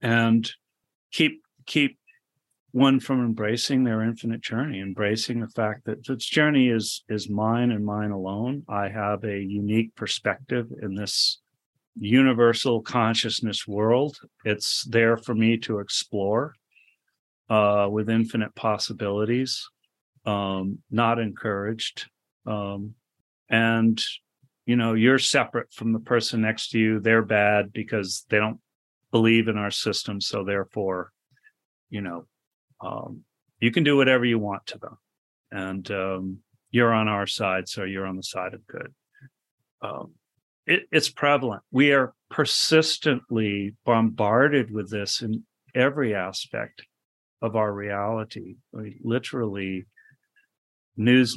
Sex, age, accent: male, 40-59, American